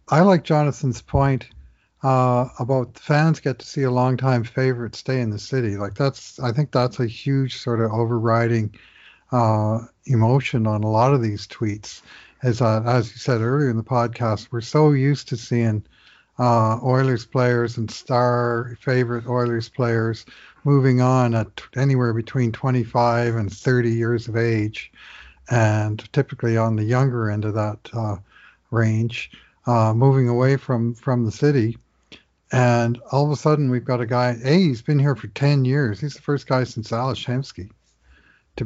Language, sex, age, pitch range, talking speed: English, male, 60-79, 115-130 Hz, 170 wpm